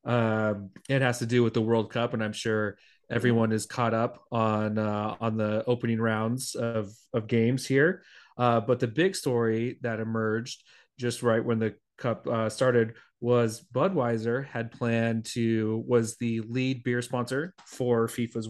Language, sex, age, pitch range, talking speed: English, male, 30-49, 115-125 Hz, 170 wpm